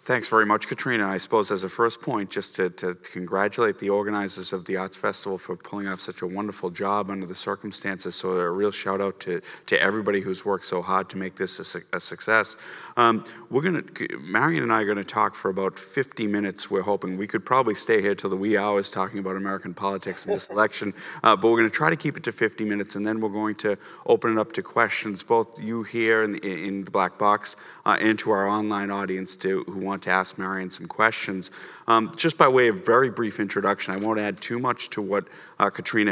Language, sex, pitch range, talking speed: English, male, 95-110 Hz, 235 wpm